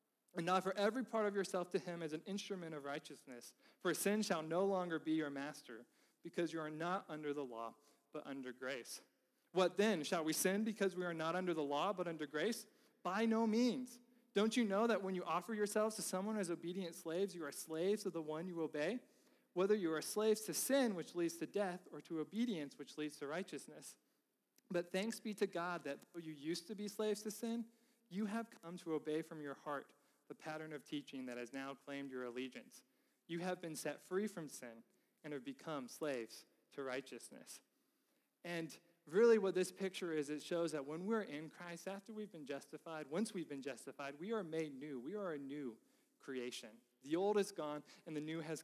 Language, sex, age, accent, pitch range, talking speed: English, male, 40-59, American, 150-205 Hz, 210 wpm